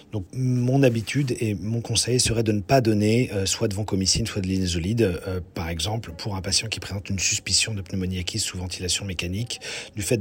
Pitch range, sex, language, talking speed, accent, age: 100-115 Hz, male, French, 210 wpm, French, 40-59